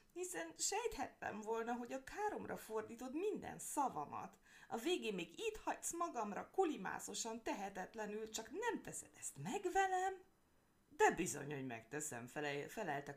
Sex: female